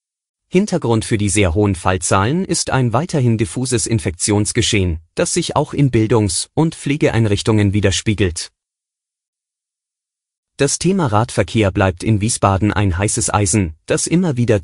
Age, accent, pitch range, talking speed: 30-49, German, 100-120 Hz, 125 wpm